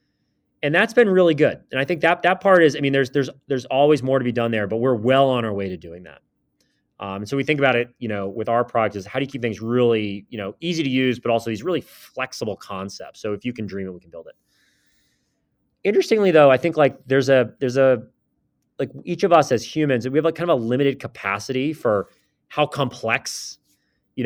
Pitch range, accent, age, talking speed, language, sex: 110-140 Hz, American, 30-49, 245 wpm, English, male